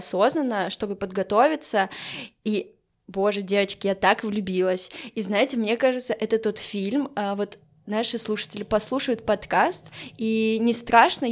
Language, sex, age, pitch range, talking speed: Russian, female, 10-29, 195-220 Hz, 125 wpm